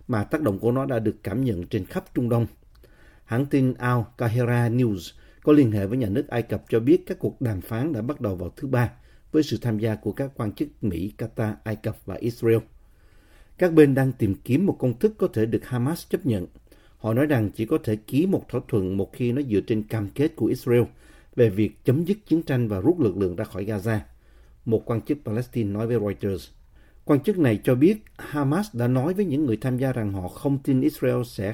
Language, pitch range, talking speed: Vietnamese, 105-140 Hz, 235 wpm